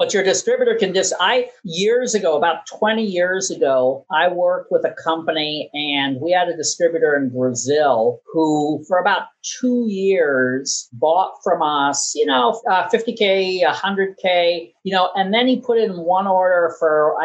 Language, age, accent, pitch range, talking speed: English, 50-69, American, 155-215 Hz, 165 wpm